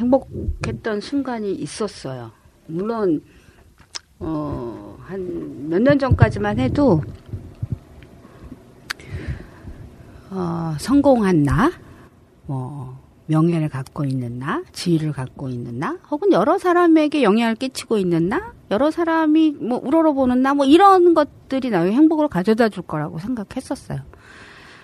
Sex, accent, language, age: female, native, Korean, 40-59